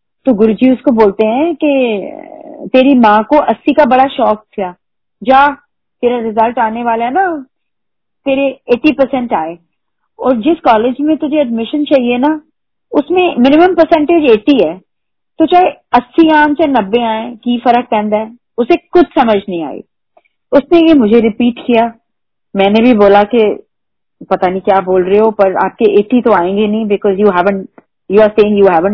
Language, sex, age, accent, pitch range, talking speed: Hindi, female, 30-49, native, 215-280 Hz, 170 wpm